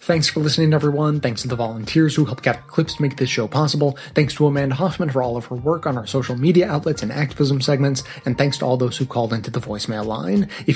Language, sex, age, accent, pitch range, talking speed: English, male, 30-49, American, 125-155 Hz, 255 wpm